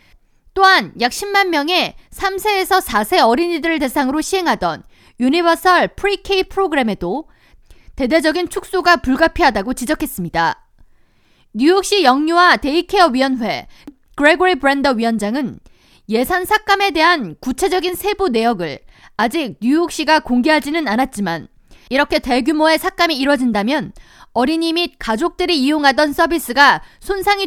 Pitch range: 260-360 Hz